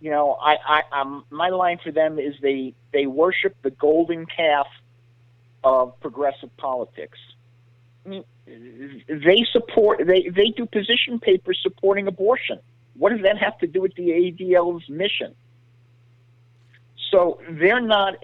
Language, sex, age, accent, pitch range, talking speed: English, male, 50-69, American, 120-160 Hz, 130 wpm